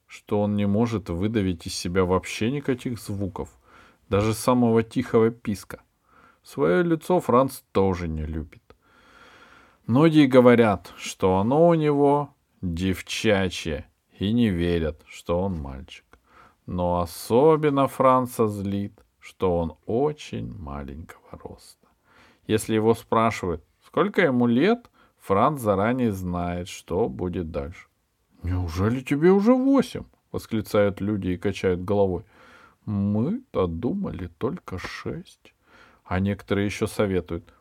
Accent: native